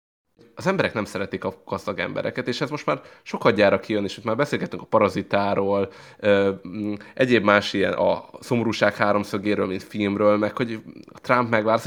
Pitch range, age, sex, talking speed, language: 100-130 Hz, 20-39, male, 160 wpm, Hungarian